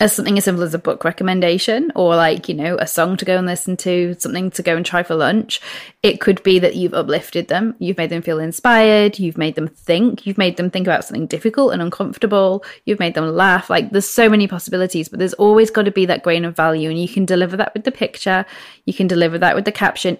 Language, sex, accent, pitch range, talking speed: English, female, British, 170-195 Hz, 255 wpm